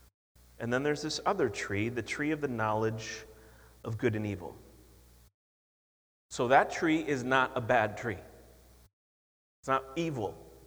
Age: 30-49